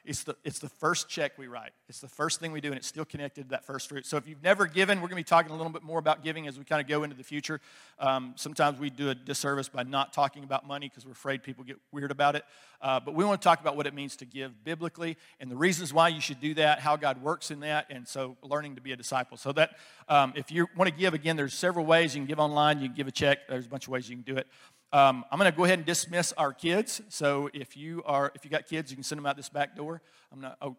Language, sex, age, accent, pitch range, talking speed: English, male, 50-69, American, 140-165 Hz, 305 wpm